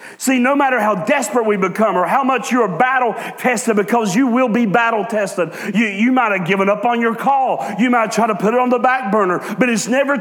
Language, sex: English, male